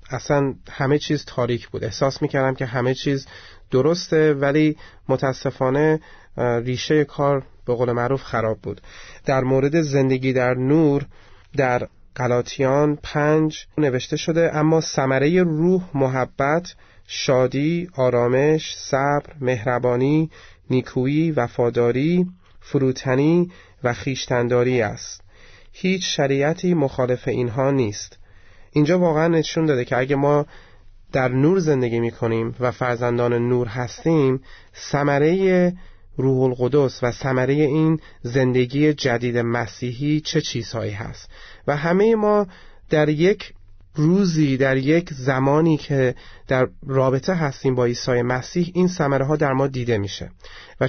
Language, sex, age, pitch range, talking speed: Persian, male, 30-49, 125-155 Hz, 120 wpm